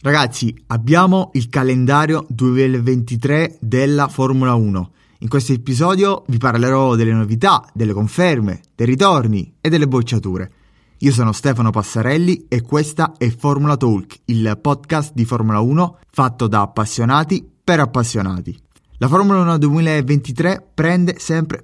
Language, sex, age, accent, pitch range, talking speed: Italian, male, 20-39, native, 115-155 Hz, 130 wpm